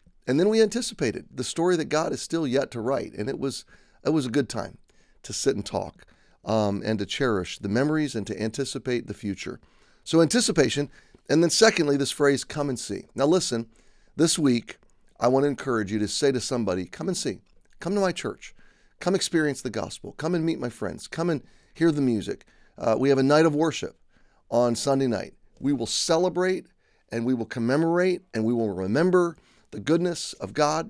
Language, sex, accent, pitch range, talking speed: English, male, American, 115-165 Hz, 205 wpm